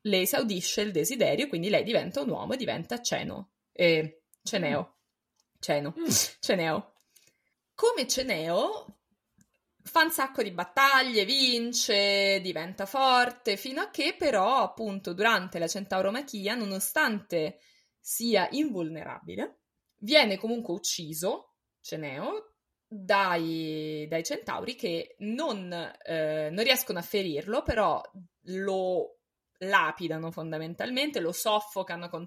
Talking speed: 110 wpm